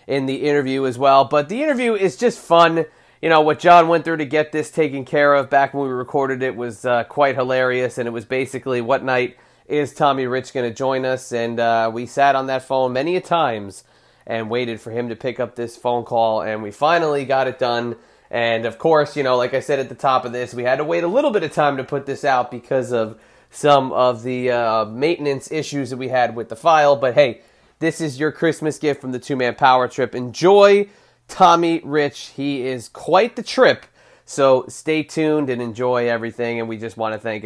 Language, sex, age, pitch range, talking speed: English, male, 30-49, 125-155 Hz, 230 wpm